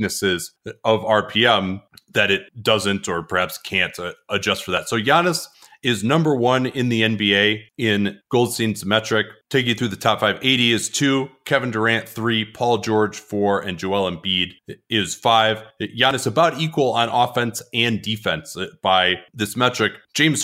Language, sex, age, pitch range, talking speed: English, male, 30-49, 100-125 Hz, 160 wpm